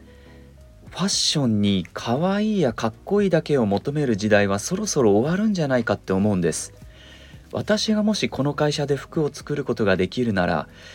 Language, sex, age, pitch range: Japanese, male, 40-59, 95-140 Hz